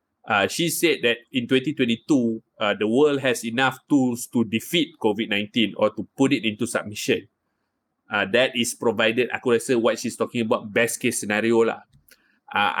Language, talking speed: Malay, 170 wpm